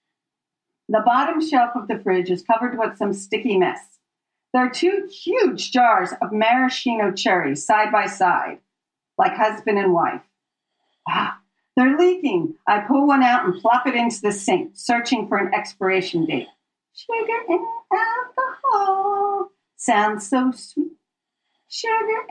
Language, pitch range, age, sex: English, 225-355 Hz, 50-69, female